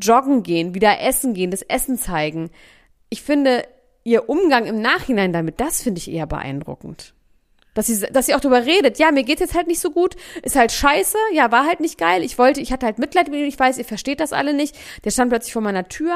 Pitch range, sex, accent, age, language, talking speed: 200-255 Hz, female, German, 30-49, German, 240 wpm